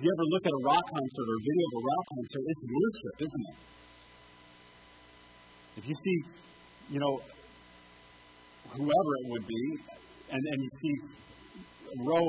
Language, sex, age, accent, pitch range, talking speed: English, male, 50-69, American, 135-185 Hz, 160 wpm